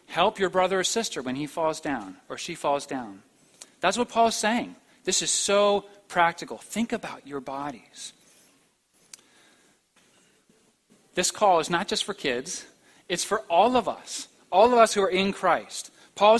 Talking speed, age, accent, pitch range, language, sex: 170 wpm, 40-59, American, 155-200 Hz, English, male